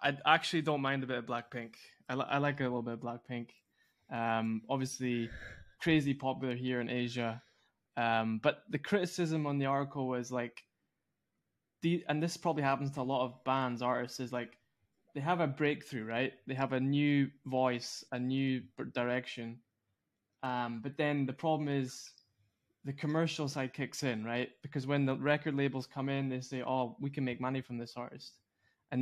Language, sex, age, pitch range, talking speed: English, male, 20-39, 120-140 Hz, 180 wpm